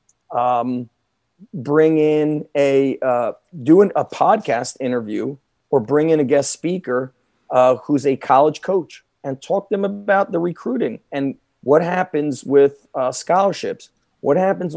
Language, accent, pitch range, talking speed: English, American, 130-155 Hz, 140 wpm